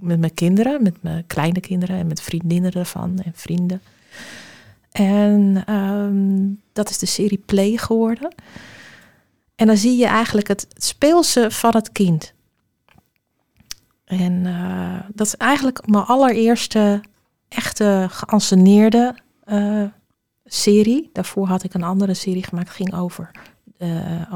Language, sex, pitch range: Dutch, female, 175-210 Hz